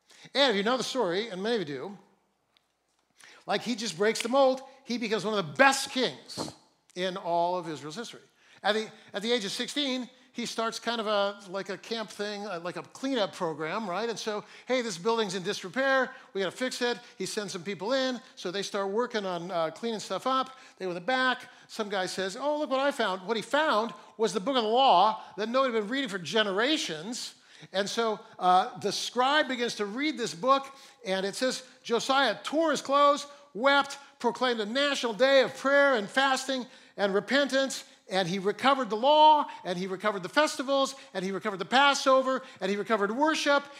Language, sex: English, male